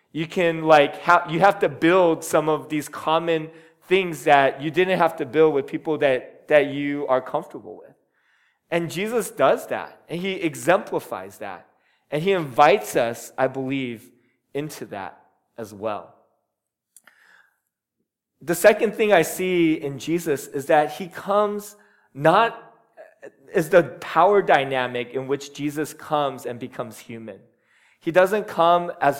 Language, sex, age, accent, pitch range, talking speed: English, male, 20-39, American, 140-170 Hz, 150 wpm